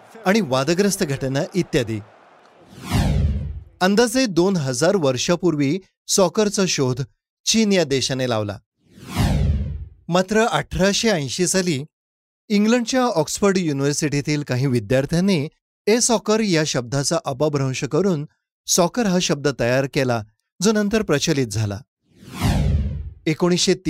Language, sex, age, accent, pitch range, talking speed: Marathi, male, 30-49, native, 130-190 Hz, 100 wpm